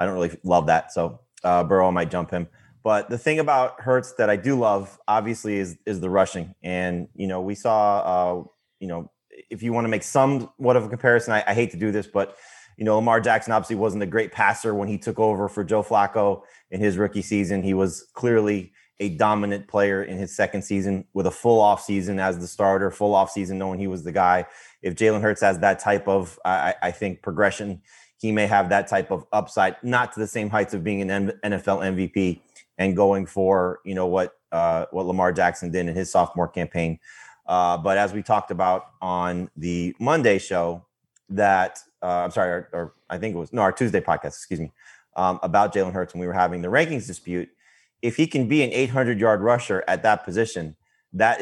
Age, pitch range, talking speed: 30-49, 90-110 Hz, 220 wpm